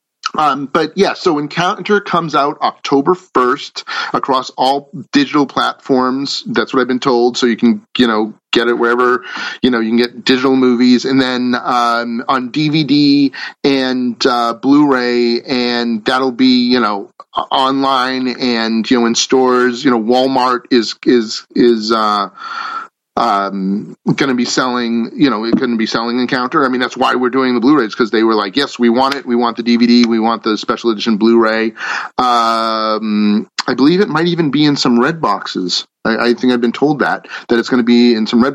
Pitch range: 115-135 Hz